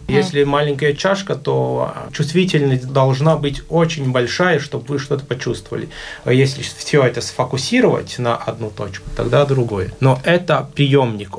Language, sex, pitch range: Russian, male, 115-150 Hz